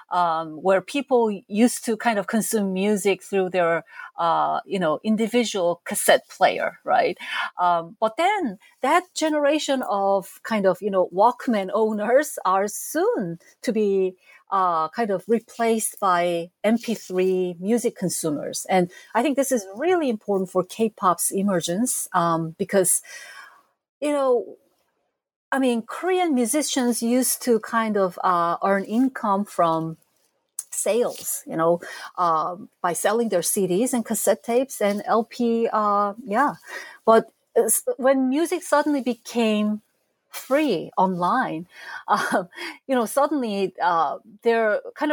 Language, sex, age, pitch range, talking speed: English, female, 40-59, 185-255 Hz, 130 wpm